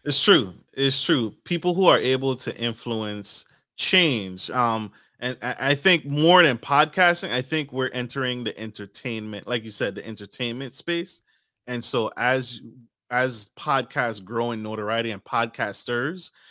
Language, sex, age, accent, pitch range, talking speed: English, male, 20-39, American, 110-135 Hz, 145 wpm